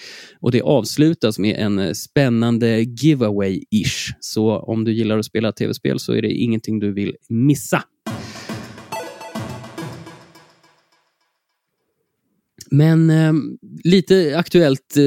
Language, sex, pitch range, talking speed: Swedish, male, 100-135 Hz, 100 wpm